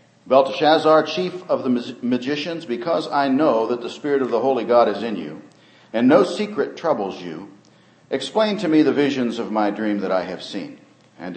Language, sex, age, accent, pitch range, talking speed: English, male, 50-69, American, 105-145 Hz, 190 wpm